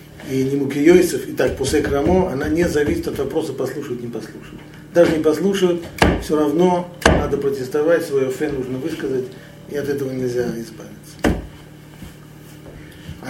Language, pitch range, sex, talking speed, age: Russian, 125-155 Hz, male, 145 wpm, 40-59